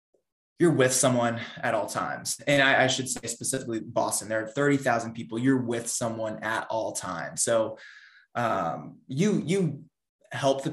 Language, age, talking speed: English, 20-39, 170 wpm